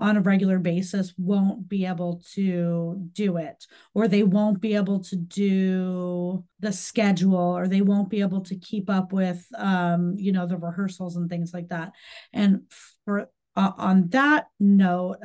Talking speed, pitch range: 170 wpm, 180-205 Hz